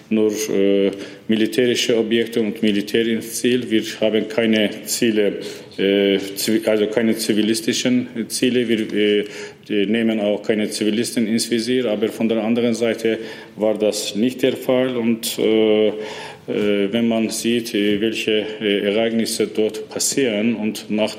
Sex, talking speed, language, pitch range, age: male, 140 wpm, German, 105-115 Hz, 40-59